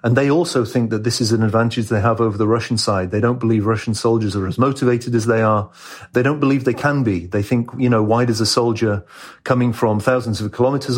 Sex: male